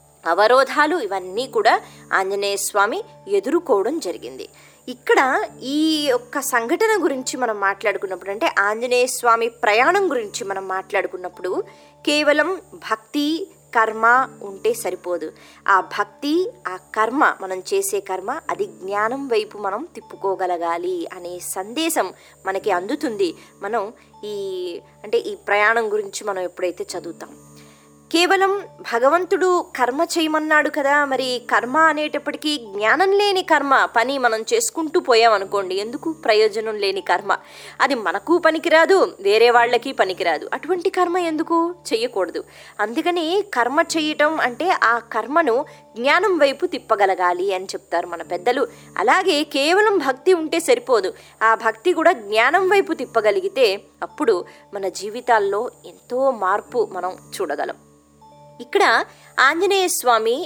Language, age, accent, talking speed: Telugu, 20-39, native, 110 wpm